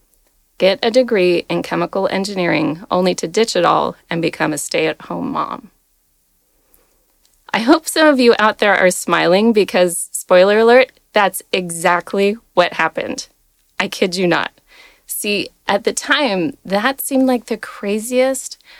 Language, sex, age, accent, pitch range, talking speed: English, female, 30-49, American, 180-230 Hz, 145 wpm